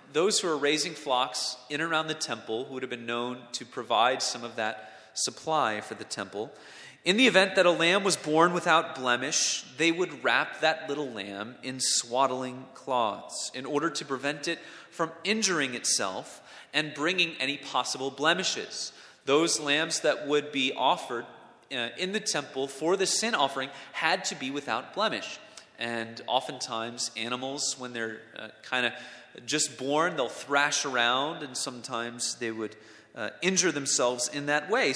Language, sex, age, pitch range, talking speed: English, male, 30-49, 125-165 Hz, 165 wpm